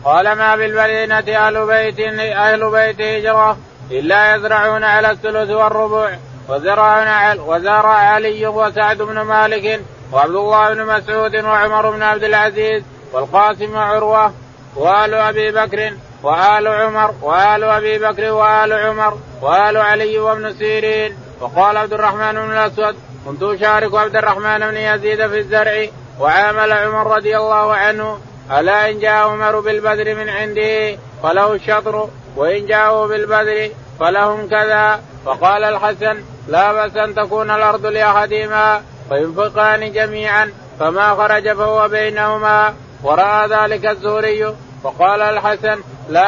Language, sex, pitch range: Arabic, male, 210-215 Hz